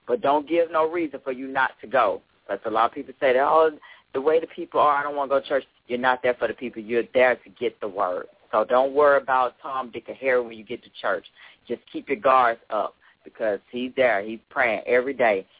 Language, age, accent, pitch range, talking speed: English, 40-59, American, 110-135 Hz, 260 wpm